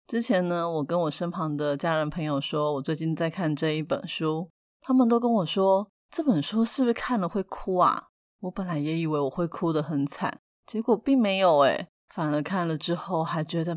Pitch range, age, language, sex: 155-195 Hz, 30-49, Chinese, female